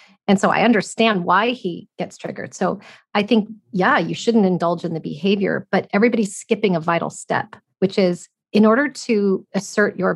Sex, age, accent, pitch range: female, 40-59, American, 185-225 Hz